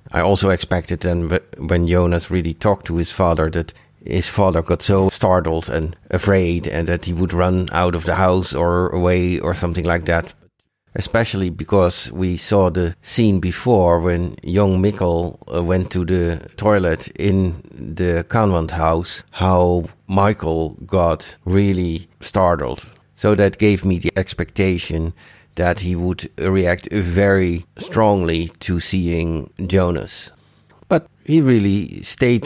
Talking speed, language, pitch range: 140 wpm, English, 85-100 Hz